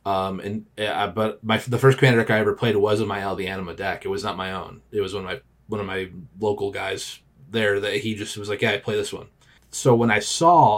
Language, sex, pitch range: English, male, 110-130 Hz